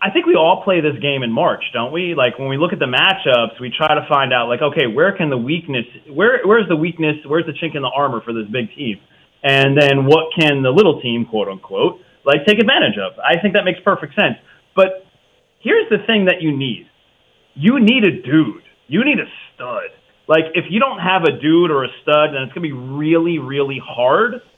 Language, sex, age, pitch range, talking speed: English, male, 30-49, 135-190 Hz, 230 wpm